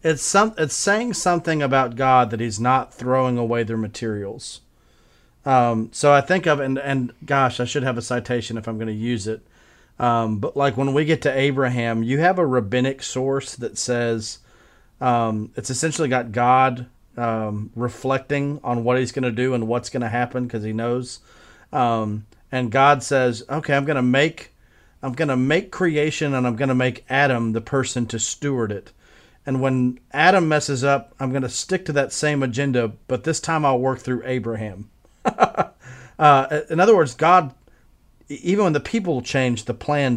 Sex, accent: male, American